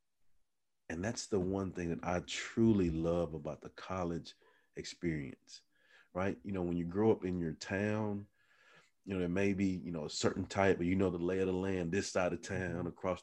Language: English